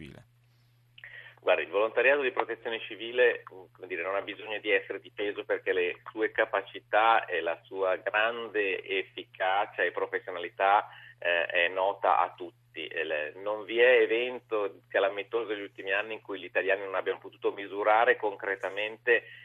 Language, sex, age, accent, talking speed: Italian, male, 30-49, native, 150 wpm